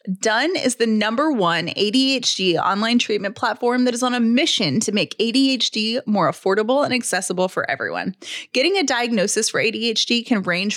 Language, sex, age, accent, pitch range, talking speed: English, female, 20-39, American, 200-265 Hz, 165 wpm